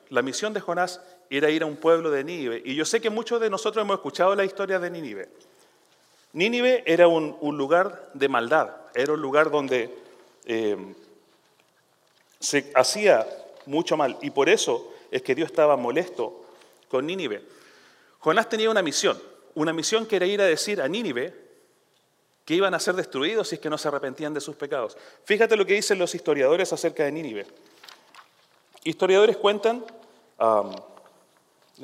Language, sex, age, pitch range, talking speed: English, male, 30-49, 155-235 Hz, 165 wpm